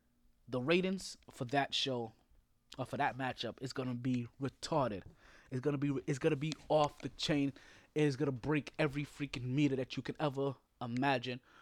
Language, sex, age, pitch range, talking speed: English, male, 20-39, 120-145 Hz, 170 wpm